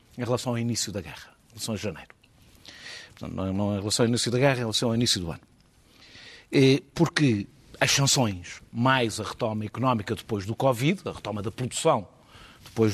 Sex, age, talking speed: male, 50-69, 185 wpm